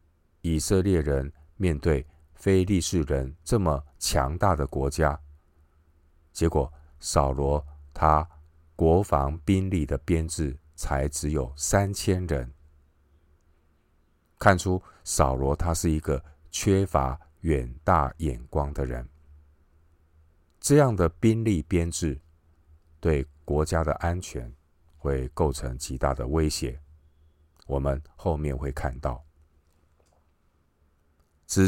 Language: Chinese